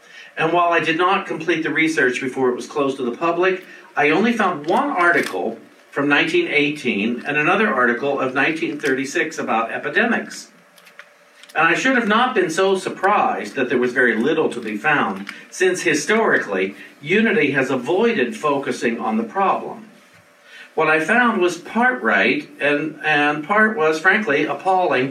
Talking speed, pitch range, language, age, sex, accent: 160 wpm, 130-185 Hz, English, 50-69, male, American